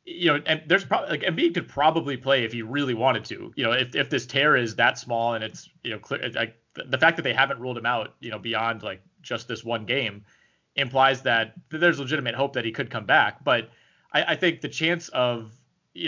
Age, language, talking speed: 30-49, English, 240 wpm